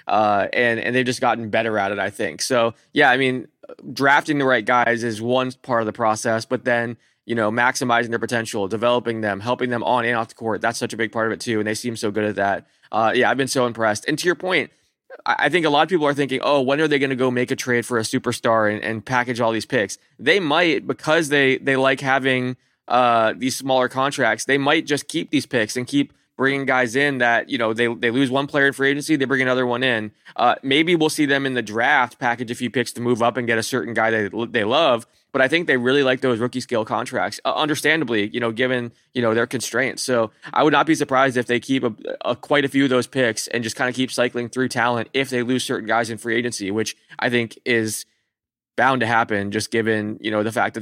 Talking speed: 260 wpm